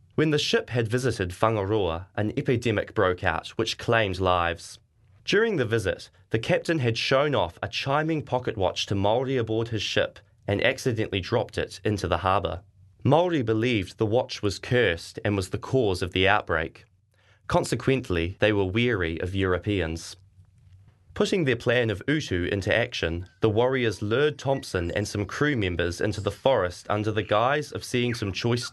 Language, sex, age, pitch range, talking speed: English, male, 20-39, 95-120 Hz, 170 wpm